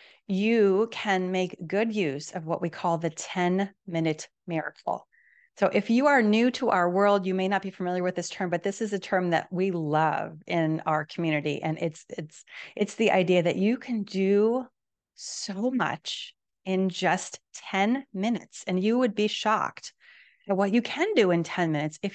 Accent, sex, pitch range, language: American, female, 175-225 Hz, English